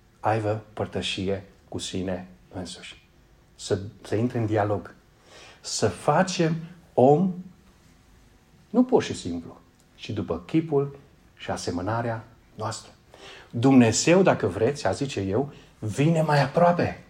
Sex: male